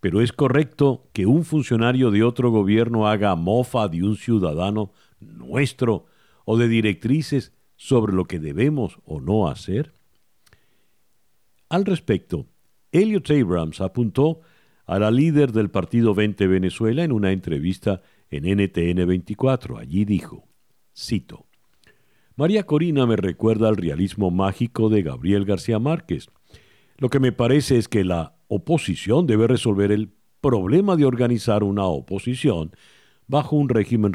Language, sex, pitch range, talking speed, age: Spanish, male, 95-135 Hz, 130 wpm, 50-69